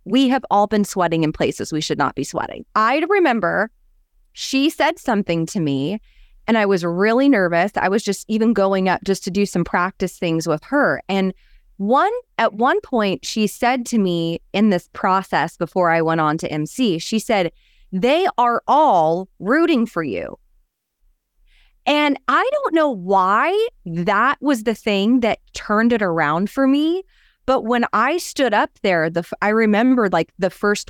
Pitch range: 185-260 Hz